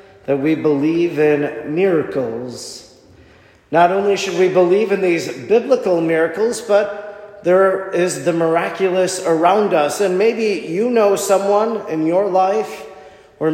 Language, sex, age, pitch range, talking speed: English, male, 40-59, 150-185 Hz, 135 wpm